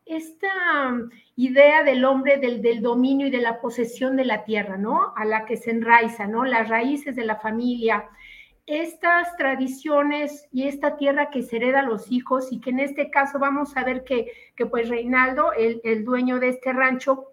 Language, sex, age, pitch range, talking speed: Spanish, female, 50-69, 235-280 Hz, 190 wpm